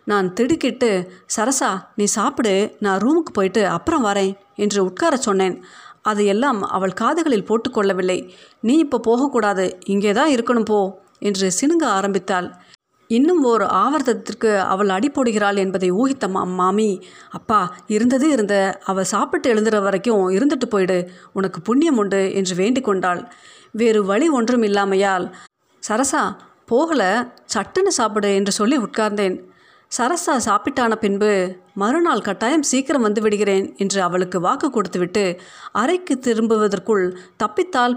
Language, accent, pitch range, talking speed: Tamil, native, 195-255 Hz, 115 wpm